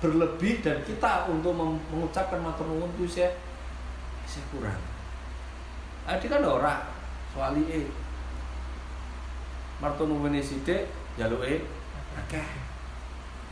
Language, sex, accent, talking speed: Indonesian, male, native, 95 wpm